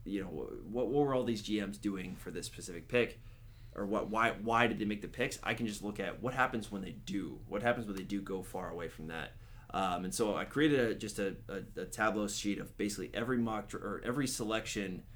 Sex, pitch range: male, 100-115 Hz